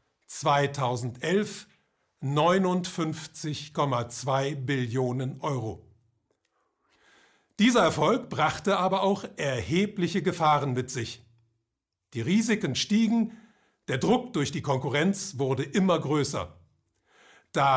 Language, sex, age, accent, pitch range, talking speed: German, male, 50-69, German, 135-190 Hz, 85 wpm